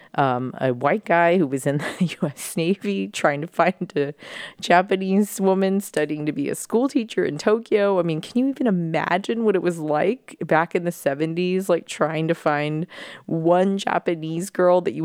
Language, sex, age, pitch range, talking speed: English, female, 20-39, 150-195 Hz, 185 wpm